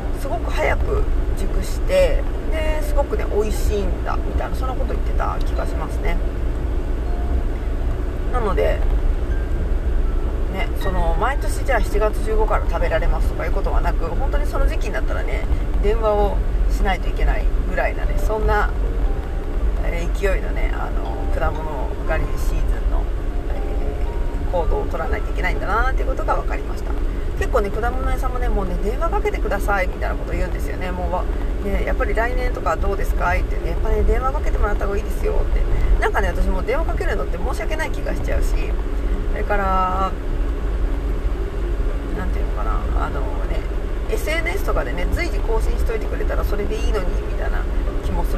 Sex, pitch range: female, 70-80 Hz